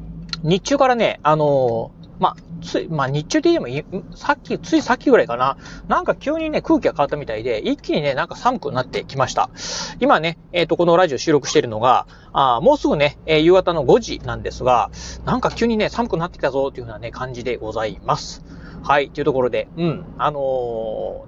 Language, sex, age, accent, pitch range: Japanese, male, 30-49, native, 145-240 Hz